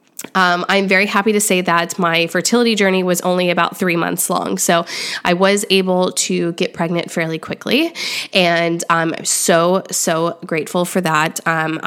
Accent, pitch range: American, 175-200 Hz